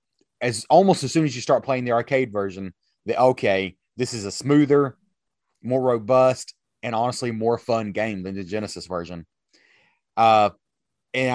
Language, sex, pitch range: English, male, 105-130 Hz